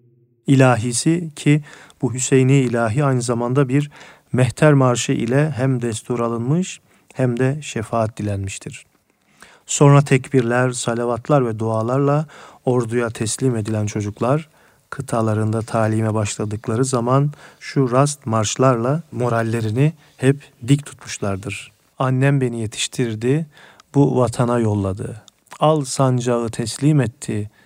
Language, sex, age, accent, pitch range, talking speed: Turkish, male, 40-59, native, 115-140 Hz, 105 wpm